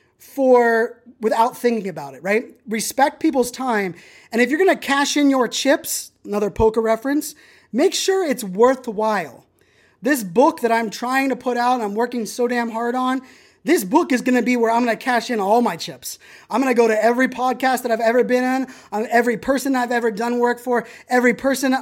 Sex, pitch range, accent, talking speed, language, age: male, 215-250 Hz, American, 205 wpm, English, 20-39